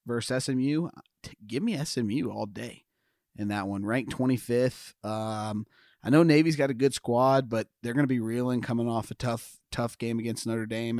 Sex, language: male, English